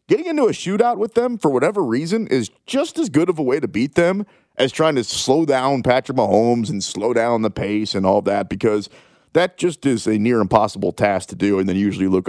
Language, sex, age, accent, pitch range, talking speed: English, male, 30-49, American, 95-130 Hz, 240 wpm